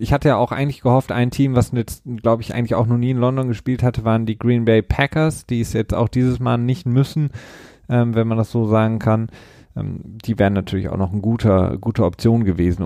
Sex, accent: male, German